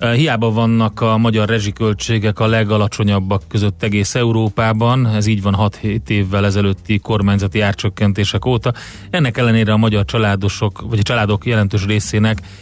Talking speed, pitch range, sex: 140 wpm, 100-115 Hz, male